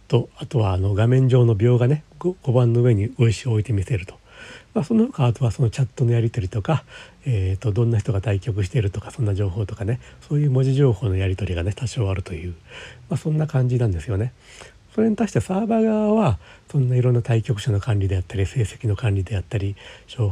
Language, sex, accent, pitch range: Japanese, male, native, 100-135 Hz